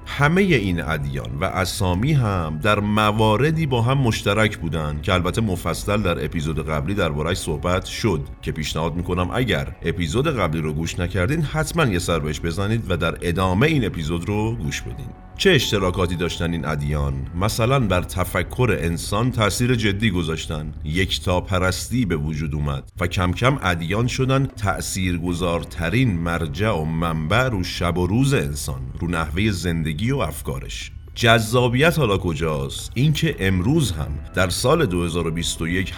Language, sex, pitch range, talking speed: Persian, male, 80-110 Hz, 150 wpm